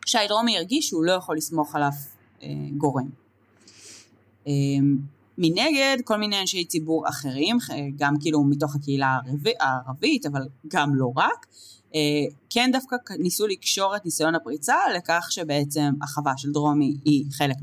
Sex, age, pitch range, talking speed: female, 20-39, 140-170 Hz, 150 wpm